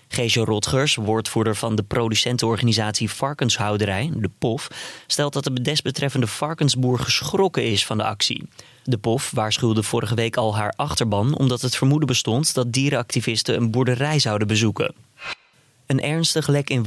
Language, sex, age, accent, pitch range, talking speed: Dutch, male, 20-39, Dutch, 110-130 Hz, 145 wpm